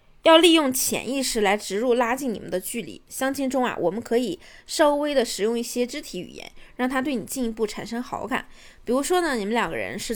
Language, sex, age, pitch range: Chinese, female, 20-39, 220-275 Hz